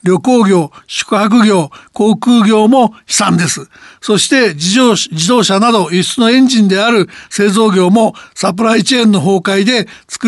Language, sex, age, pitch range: Japanese, male, 60-79, 195-240 Hz